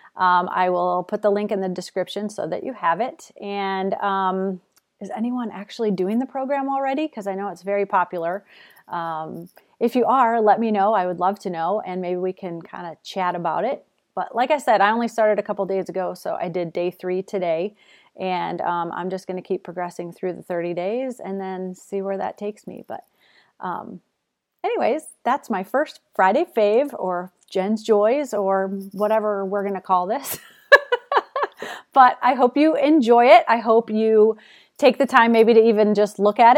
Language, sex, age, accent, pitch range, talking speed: English, female, 30-49, American, 185-230 Hz, 200 wpm